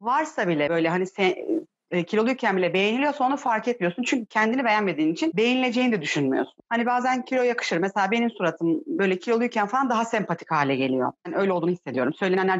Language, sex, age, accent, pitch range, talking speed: Turkish, female, 40-59, native, 185-255 Hz, 165 wpm